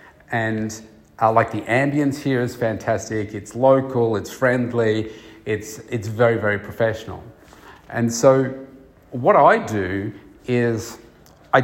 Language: English